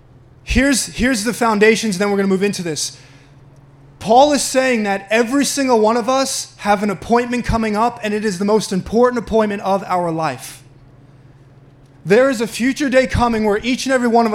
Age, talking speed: 20-39, 195 wpm